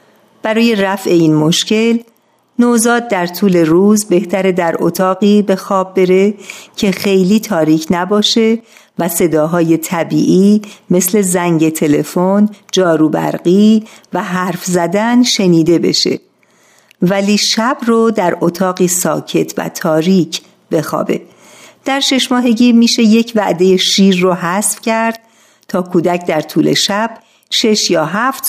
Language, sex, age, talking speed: Persian, female, 50-69, 120 wpm